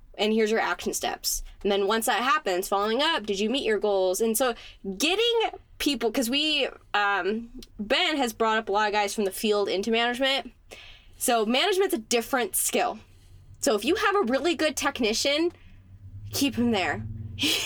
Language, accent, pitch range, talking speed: English, American, 200-260 Hz, 180 wpm